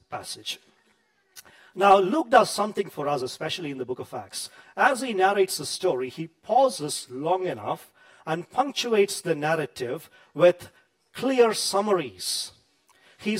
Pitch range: 145-195 Hz